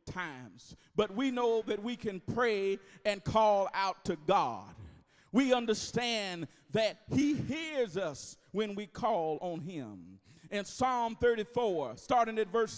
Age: 40-59